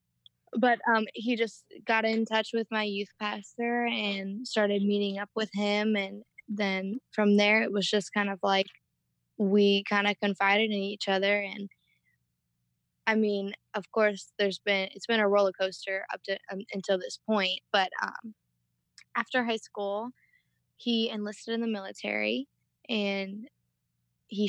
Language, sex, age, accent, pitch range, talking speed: English, female, 20-39, American, 190-215 Hz, 155 wpm